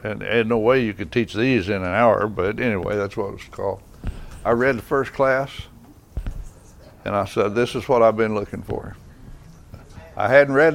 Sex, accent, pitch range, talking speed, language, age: male, American, 105-125 Hz, 200 wpm, English, 60-79